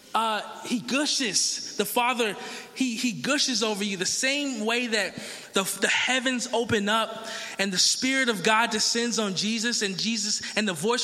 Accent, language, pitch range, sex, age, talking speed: American, English, 195-245 Hz, male, 20-39, 175 wpm